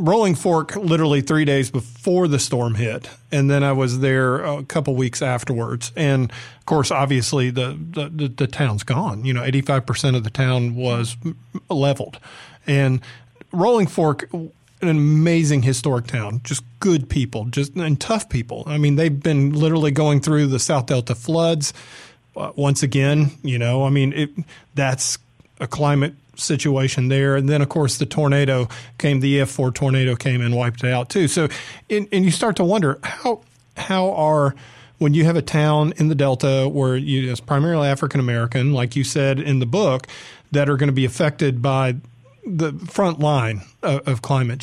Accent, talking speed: American, 180 wpm